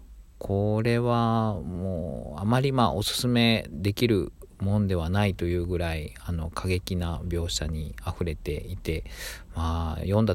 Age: 40-59